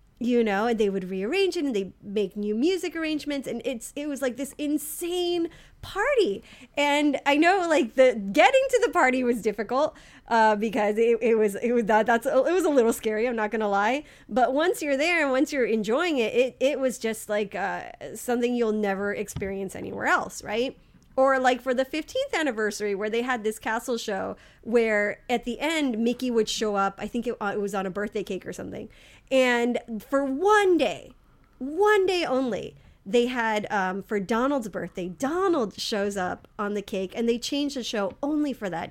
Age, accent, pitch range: 30-49, American, 210-280 Hz